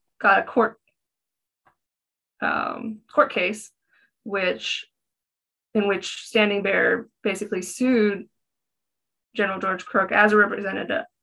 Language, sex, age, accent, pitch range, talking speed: English, female, 20-39, American, 190-230 Hz, 100 wpm